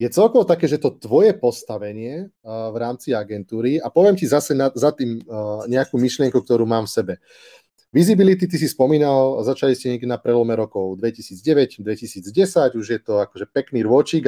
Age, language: 30-49, Slovak